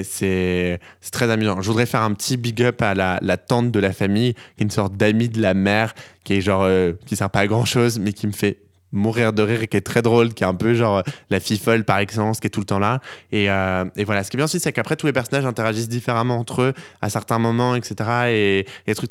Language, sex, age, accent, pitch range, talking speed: French, male, 20-39, French, 95-115 Hz, 285 wpm